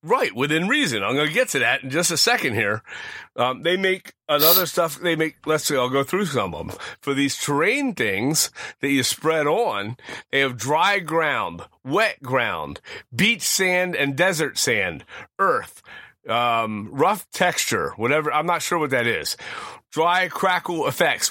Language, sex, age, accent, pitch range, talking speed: English, male, 30-49, American, 135-175 Hz, 175 wpm